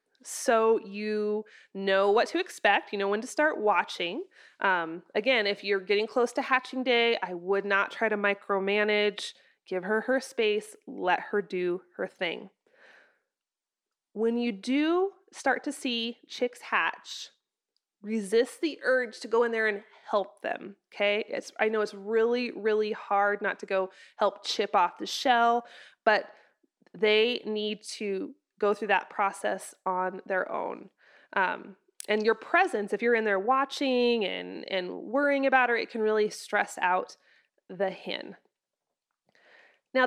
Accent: American